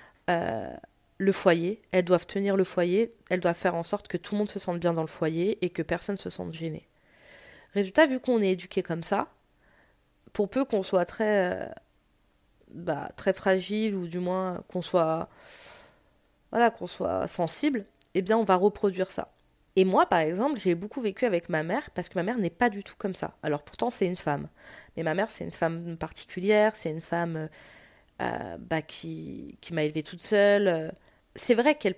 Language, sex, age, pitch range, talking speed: French, female, 20-39, 180-215 Hz, 200 wpm